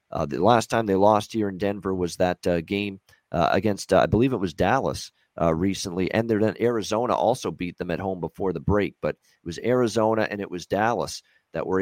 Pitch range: 90-110 Hz